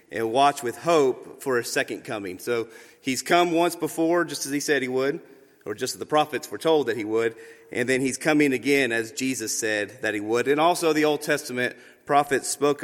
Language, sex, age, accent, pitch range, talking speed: English, male, 30-49, American, 125-155 Hz, 220 wpm